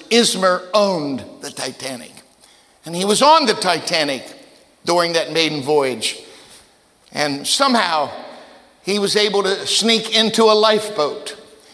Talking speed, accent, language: 125 wpm, American, English